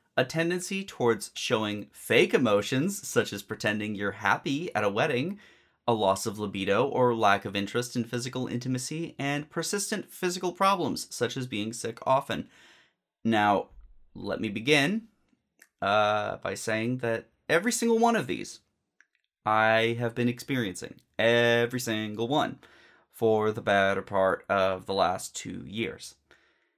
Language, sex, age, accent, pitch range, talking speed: English, male, 30-49, American, 105-125 Hz, 140 wpm